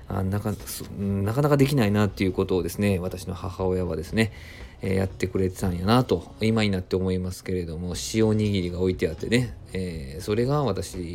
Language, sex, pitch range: Japanese, male, 95-125 Hz